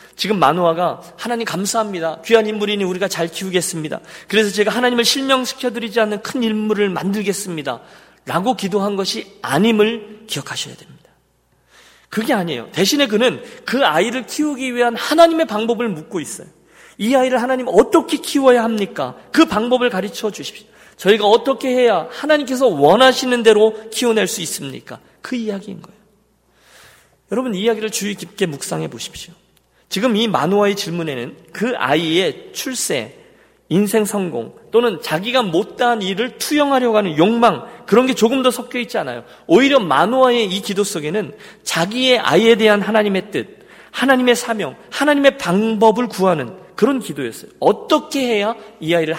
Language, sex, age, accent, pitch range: Korean, male, 40-59, native, 185-245 Hz